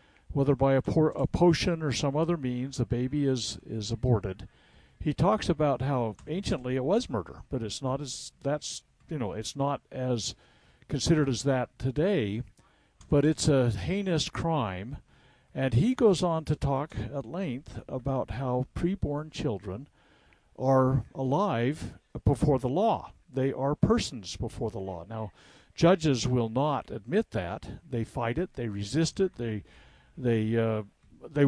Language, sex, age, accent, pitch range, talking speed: English, male, 60-79, American, 115-160 Hz, 155 wpm